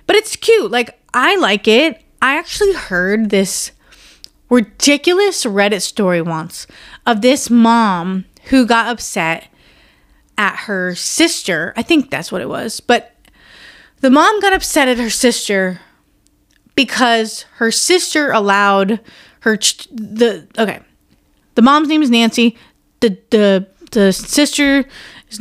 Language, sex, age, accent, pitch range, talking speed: English, female, 30-49, American, 200-265 Hz, 130 wpm